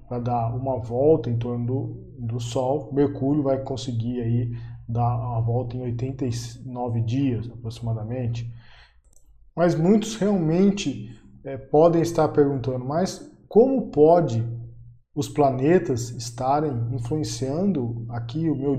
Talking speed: 120 wpm